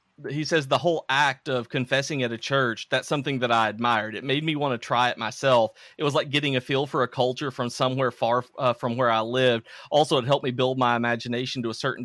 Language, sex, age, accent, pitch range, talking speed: English, male, 30-49, American, 115-135 Hz, 250 wpm